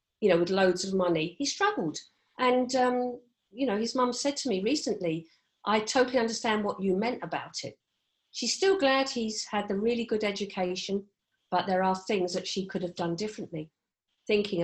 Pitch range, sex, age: 175-220 Hz, female, 50-69